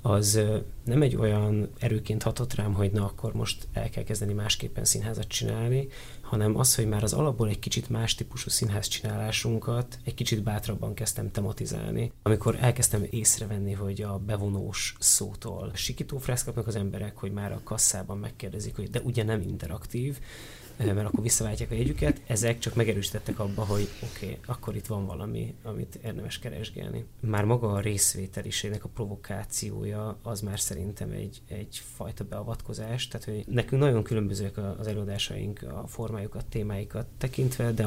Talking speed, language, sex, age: 155 wpm, Hungarian, male, 30-49